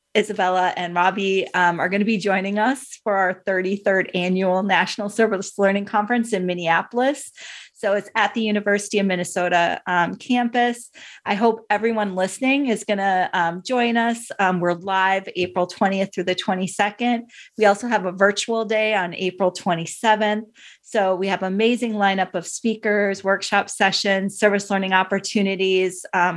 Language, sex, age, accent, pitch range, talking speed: English, female, 30-49, American, 185-210 Hz, 155 wpm